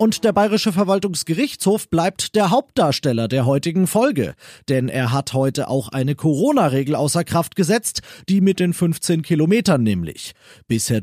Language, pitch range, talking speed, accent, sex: German, 135-190 Hz, 145 wpm, German, male